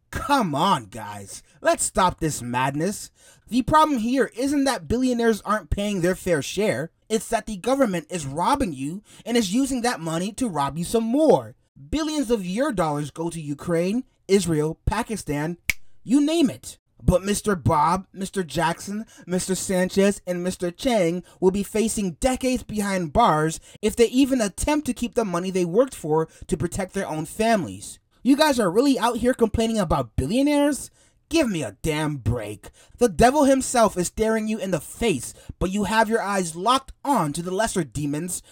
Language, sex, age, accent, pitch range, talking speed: English, male, 30-49, American, 165-230 Hz, 175 wpm